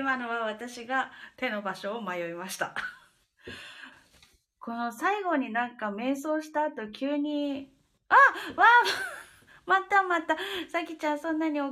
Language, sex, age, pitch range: Japanese, female, 20-39, 230-300 Hz